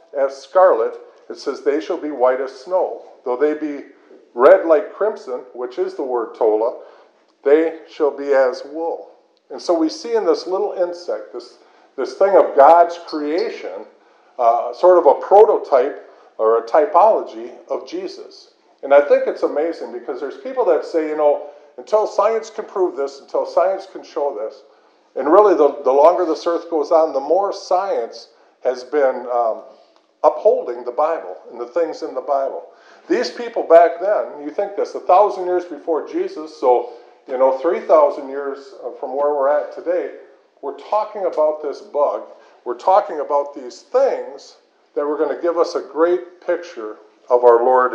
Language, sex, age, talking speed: English, male, 50-69, 175 wpm